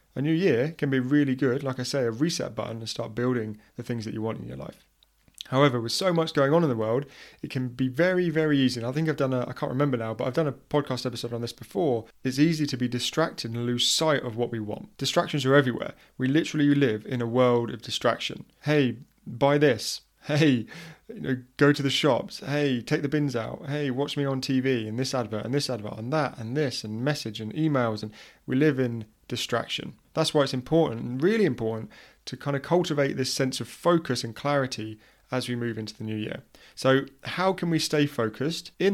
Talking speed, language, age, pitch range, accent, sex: 230 wpm, English, 30-49, 120-150 Hz, British, male